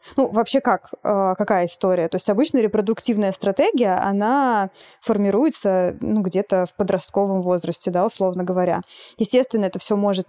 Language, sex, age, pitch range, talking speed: Russian, female, 20-39, 190-225 Hz, 145 wpm